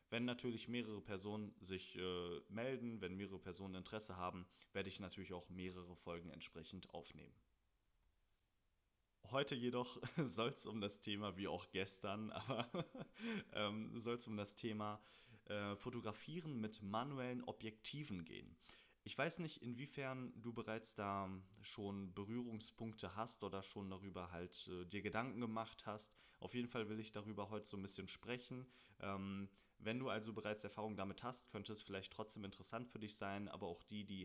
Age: 30-49